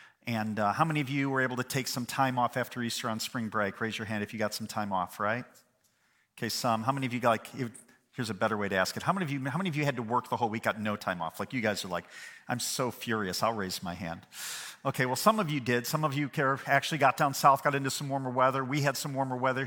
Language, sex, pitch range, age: English, male, 115-140 Hz, 40-59